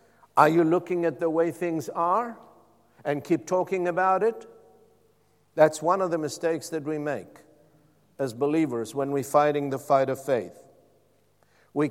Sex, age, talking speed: male, 60-79, 155 wpm